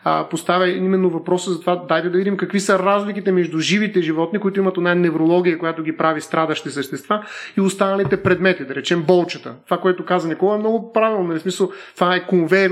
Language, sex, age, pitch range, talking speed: Bulgarian, male, 30-49, 170-200 Hz, 190 wpm